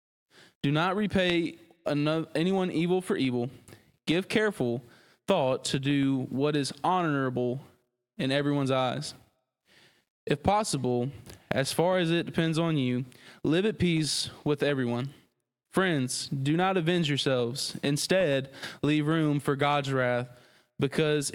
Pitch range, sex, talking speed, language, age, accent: 130-160 Hz, male, 125 wpm, English, 20-39, American